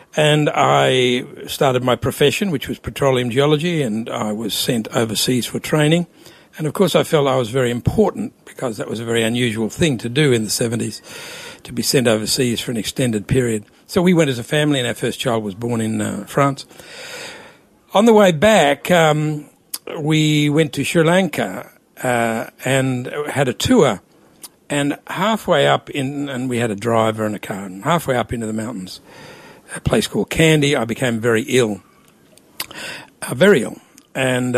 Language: English